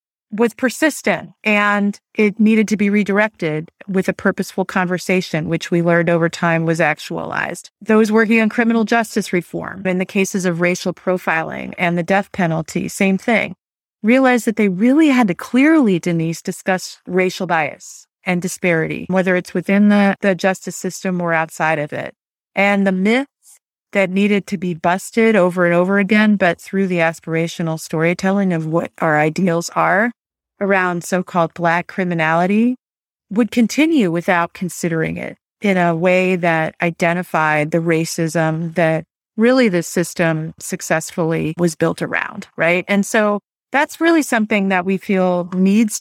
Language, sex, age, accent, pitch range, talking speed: English, female, 30-49, American, 170-210 Hz, 155 wpm